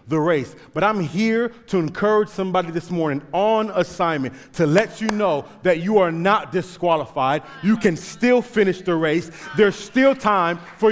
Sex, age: male, 30-49